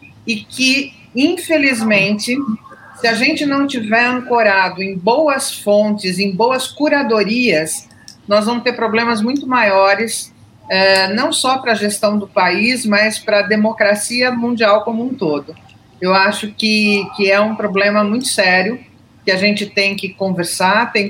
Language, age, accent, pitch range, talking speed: Portuguese, 40-59, Brazilian, 190-230 Hz, 150 wpm